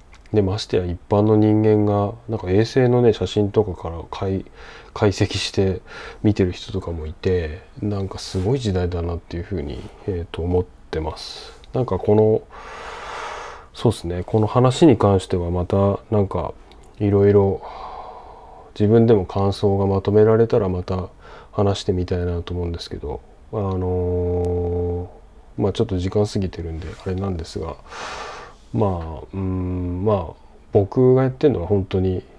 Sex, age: male, 20-39